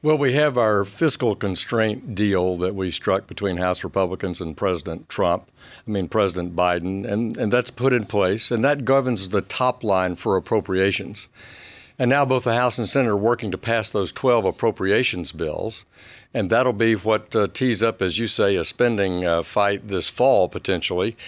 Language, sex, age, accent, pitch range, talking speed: English, male, 60-79, American, 100-125 Hz, 185 wpm